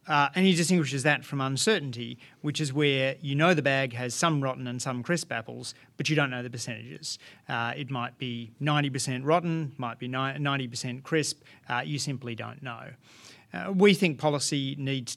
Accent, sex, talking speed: Australian, male, 185 wpm